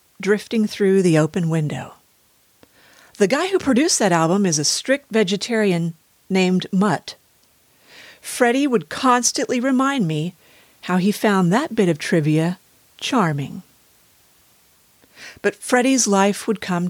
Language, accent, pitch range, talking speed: English, American, 165-215 Hz, 125 wpm